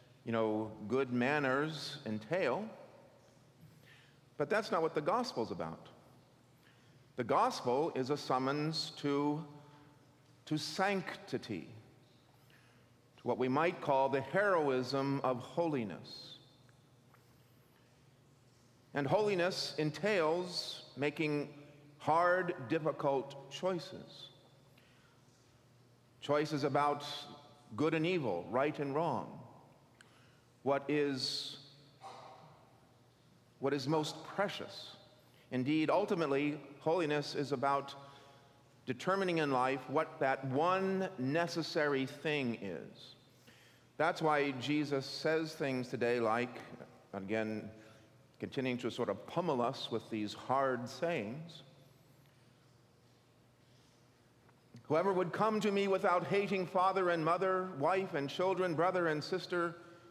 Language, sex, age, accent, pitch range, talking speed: English, male, 50-69, American, 125-155 Hz, 100 wpm